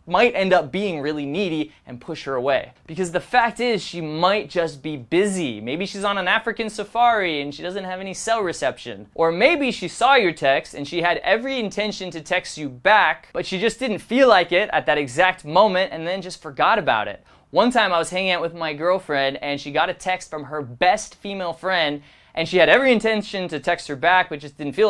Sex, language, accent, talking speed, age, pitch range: male, English, American, 230 wpm, 20-39, 145-190 Hz